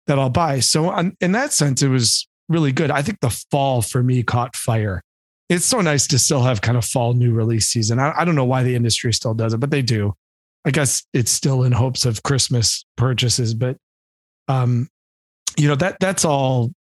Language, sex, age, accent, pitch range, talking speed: English, male, 30-49, American, 115-140 Hz, 210 wpm